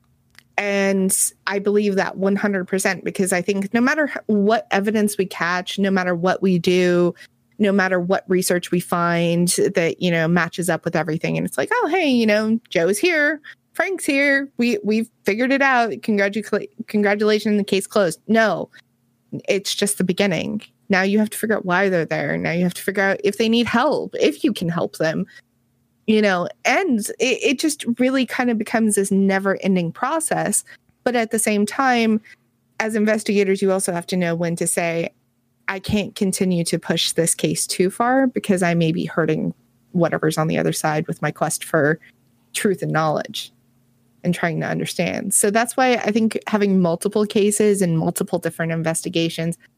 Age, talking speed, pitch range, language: 20-39, 180 wpm, 175-220 Hz, English